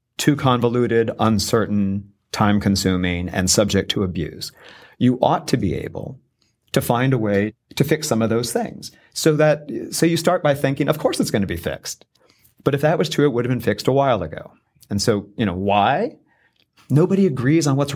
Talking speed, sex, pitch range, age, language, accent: 200 wpm, male, 95-125 Hz, 40-59, English, American